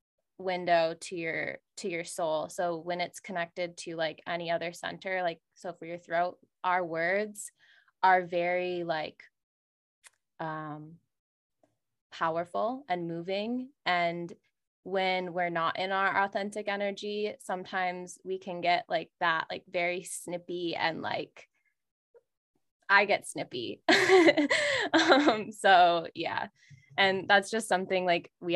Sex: female